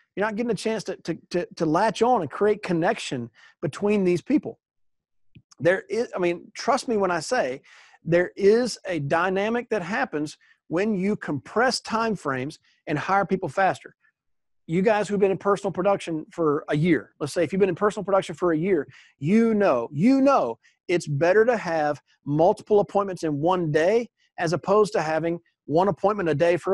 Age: 40-59